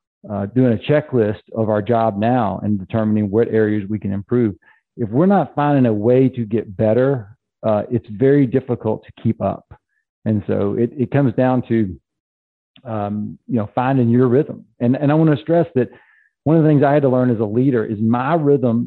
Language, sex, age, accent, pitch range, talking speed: English, male, 40-59, American, 110-140 Hz, 205 wpm